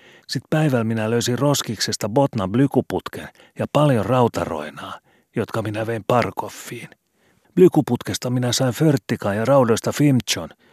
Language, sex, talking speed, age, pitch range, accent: Finnish, male, 115 wpm, 40-59, 100-135 Hz, native